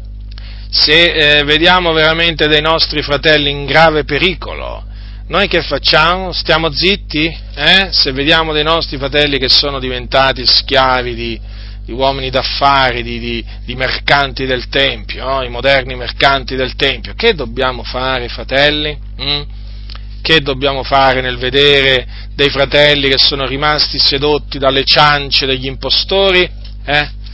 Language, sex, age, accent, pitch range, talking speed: Italian, male, 40-59, native, 120-155 Hz, 130 wpm